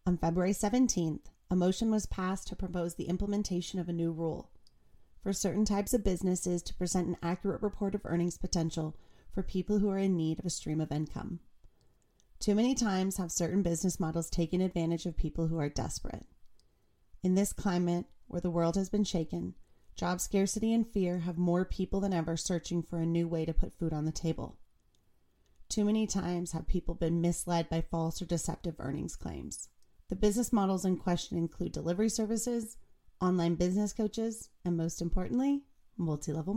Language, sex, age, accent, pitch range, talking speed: English, female, 30-49, American, 170-200 Hz, 180 wpm